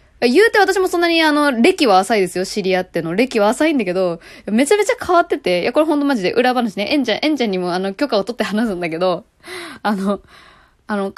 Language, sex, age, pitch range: Japanese, female, 20-39, 190-300 Hz